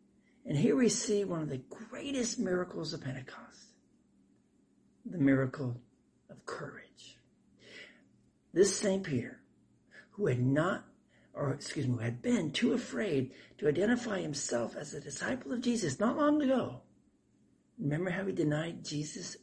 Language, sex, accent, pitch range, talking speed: English, male, American, 130-195 Hz, 140 wpm